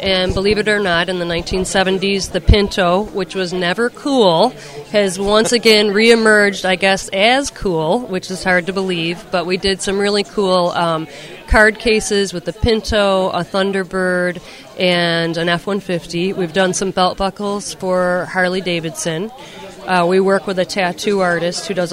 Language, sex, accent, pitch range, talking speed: English, female, American, 175-205 Hz, 160 wpm